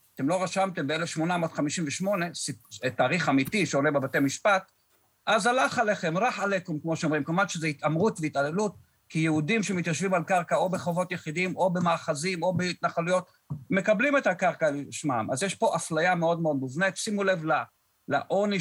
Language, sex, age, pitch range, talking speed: Hebrew, male, 50-69, 140-180 Hz, 150 wpm